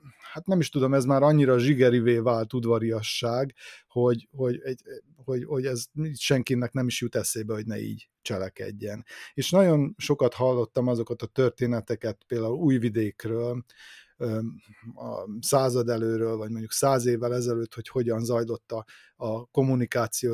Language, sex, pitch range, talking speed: Hungarian, male, 115-135 Hz, 130 wpm